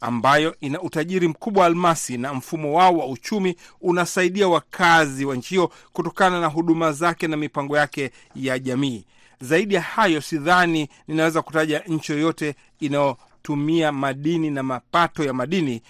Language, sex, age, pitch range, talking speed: Swahili, male, 40-59, 135-175 Hz, 140 wpm